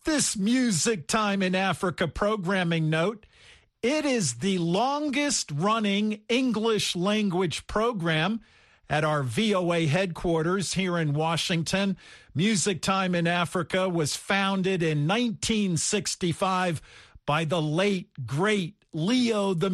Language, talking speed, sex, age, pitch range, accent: English, 110 wpm, male, 50-69, 160-230 Hz, American